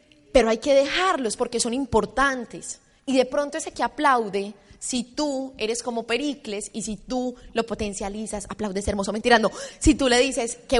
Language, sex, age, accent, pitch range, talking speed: Spanish, female, 20-39, Colombian, 210-285 Hz, 170 wpm